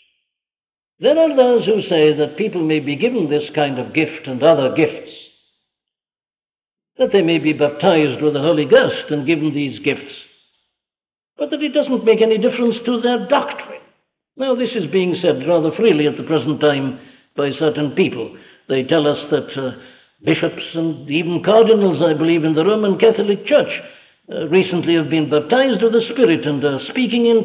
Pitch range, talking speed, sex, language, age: 155-225 Hz, 180 wpm, male, English, 60-79